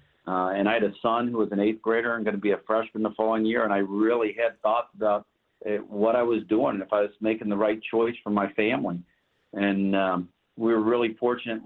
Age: 50-69